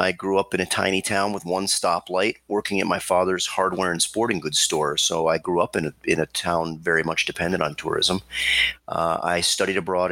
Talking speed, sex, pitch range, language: 220 wpm, male, 85-95 Hz, English